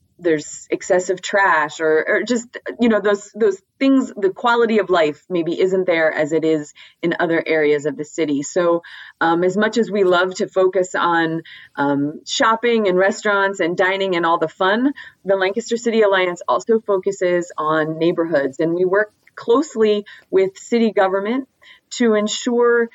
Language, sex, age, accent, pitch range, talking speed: English, female, 30-49, American, 170-220 Hz, 165 wpm